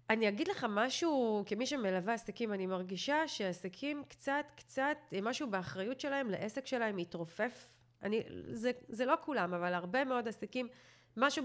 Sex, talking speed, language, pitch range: female, 145 wpm, Hebrew, 190-250 Hz